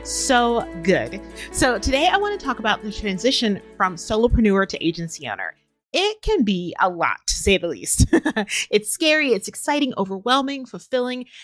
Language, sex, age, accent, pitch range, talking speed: English, female, 30-49, American, 180-240 Hz, 165 wpm